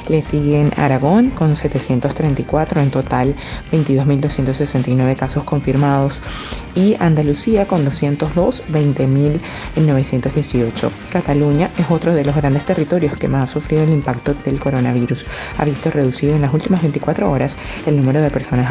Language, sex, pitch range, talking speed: Spanish, female, 135-160 Hz, 135 wpm